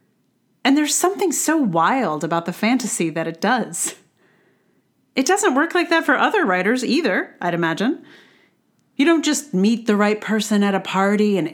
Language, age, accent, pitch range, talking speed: English, 40-59, American, 175-260 Hz, 170 wpm